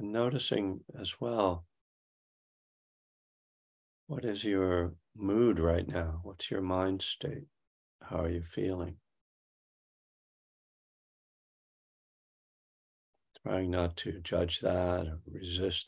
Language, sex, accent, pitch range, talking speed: English, male, American, 80-95 Hz, 95 wpm